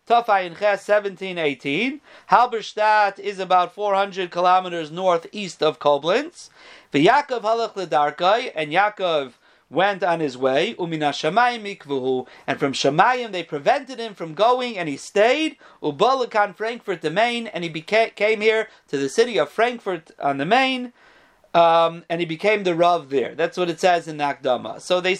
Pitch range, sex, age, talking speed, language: 155-215 Hz, male, 40-59, 150 wpm, English